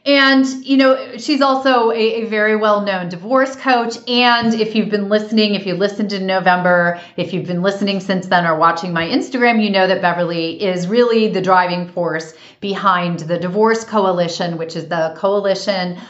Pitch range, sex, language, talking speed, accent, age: 180-215 Hz, female, English, 180 wpm, American, 30-49